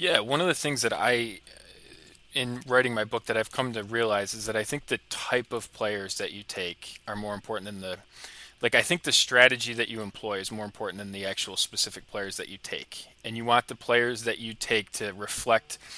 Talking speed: 230 wpm